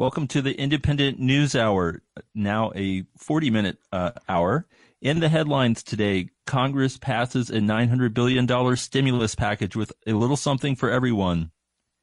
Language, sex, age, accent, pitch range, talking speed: English, male, 40-59, American, 105-125 Hz, 135 wpm